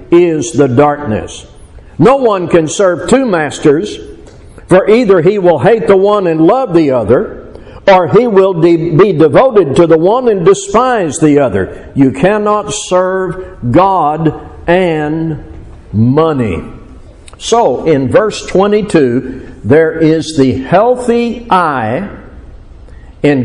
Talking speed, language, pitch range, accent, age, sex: 125 wpm, English, 150-210 Hz, American, 60-79, male